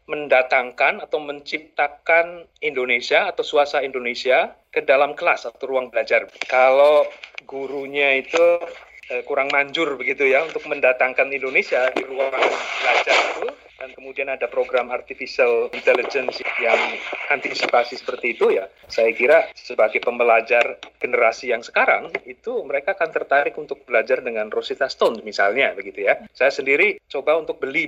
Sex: male